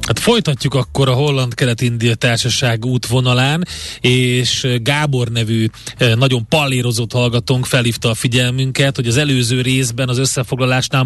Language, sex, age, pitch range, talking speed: Hungarian, male, 30-49, 120-145 Hz, 120 wpm